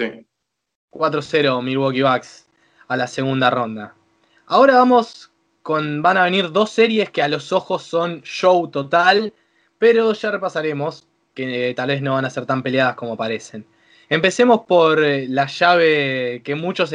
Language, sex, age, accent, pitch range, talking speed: Spanish, male, 20-39, Argentinian, 135-165 Hz, 150 wpm